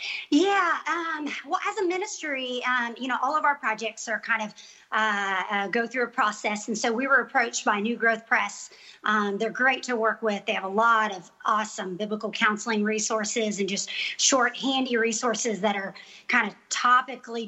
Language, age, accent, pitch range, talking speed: English, 40-59, American, 215-260 Hz, 190 wpm